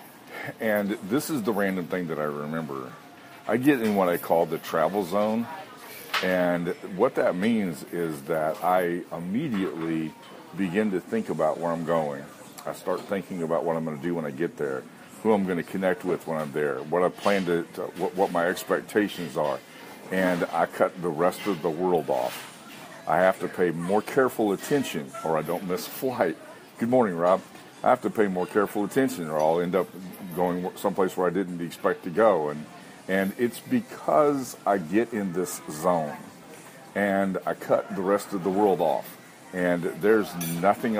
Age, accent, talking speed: 50-69, American, 190 wpm